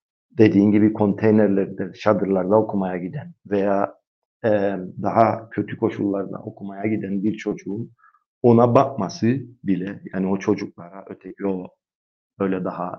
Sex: male